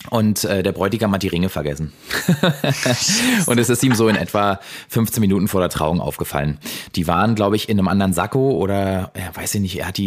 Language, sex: German, male